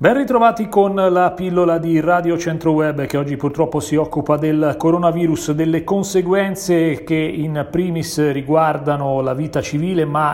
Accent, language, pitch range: native, Italian, 145-175 Hz